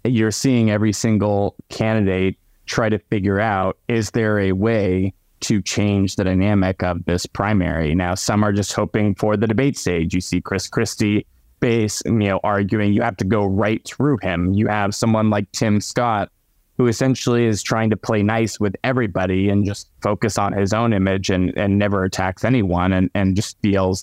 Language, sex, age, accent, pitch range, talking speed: English, male, 20-39, American, 95-110 Hz, 185 wpm